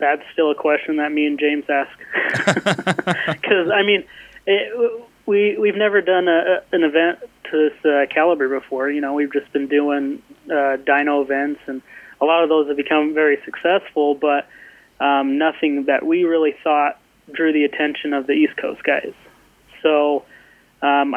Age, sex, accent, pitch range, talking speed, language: 20-39, male, American, 140-160 Hz, 170 wpm, English